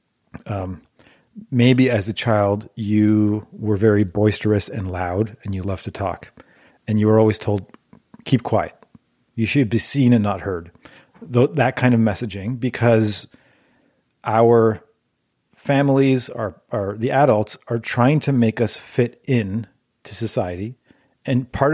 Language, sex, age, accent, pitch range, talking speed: English, male, 40-59, American, 105-125 Hz, 145 wpm